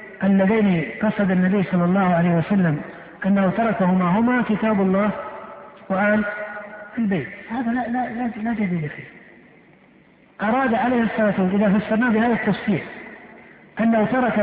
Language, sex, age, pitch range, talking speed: Arabic, male, 50-69, 195-240 Hz, 120 wpm